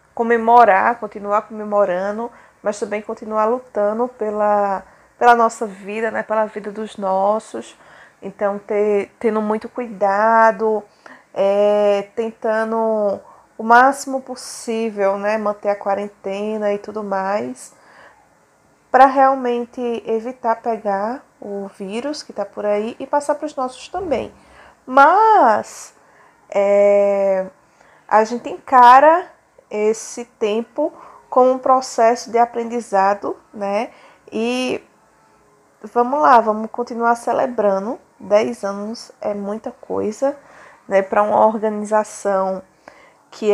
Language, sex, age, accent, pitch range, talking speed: Portuguese, female, 20-39, Brazilian, 205-245 Hz, 105 wpm